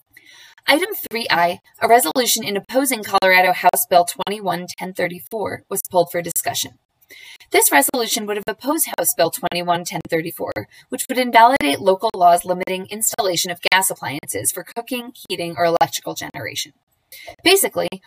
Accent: American